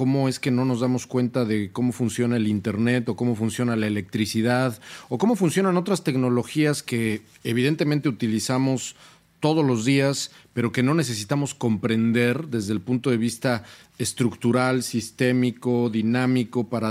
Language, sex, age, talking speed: Spanish, male, 40-59, 150 wpm